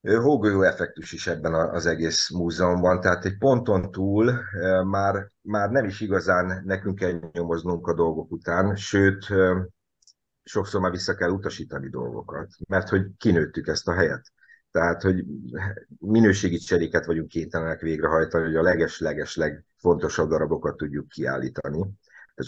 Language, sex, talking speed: Hungarian, male, 130 wpm